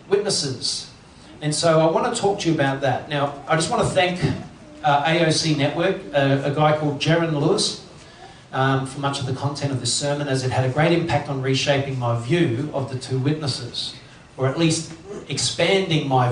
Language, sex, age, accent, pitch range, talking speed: English, male, 40-59, Australian, 135-165 Hz, 200 wpm